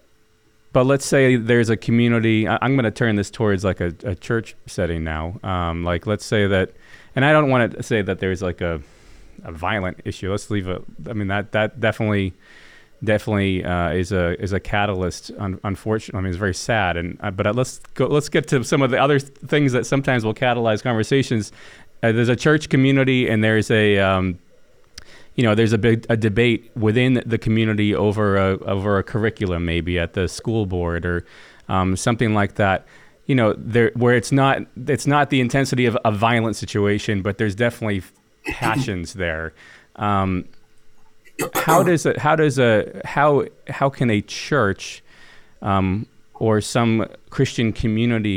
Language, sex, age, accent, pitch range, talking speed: English, male, 30-49, American, 95-120 Hz, 185 wpm